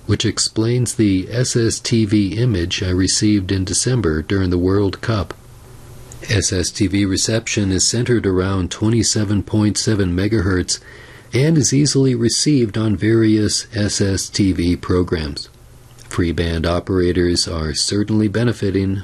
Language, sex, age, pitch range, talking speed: English, male, 40-59, 95-120 Hz, 105 wpm